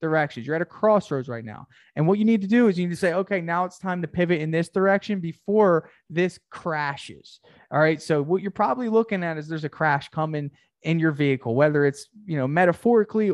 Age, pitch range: 20-39, 145-180 Hz